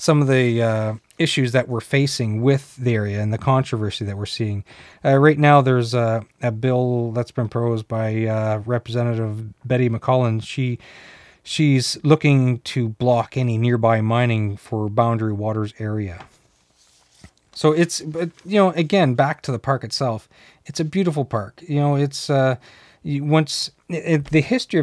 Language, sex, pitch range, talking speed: English, male, 115-135 Hz, 155 wpm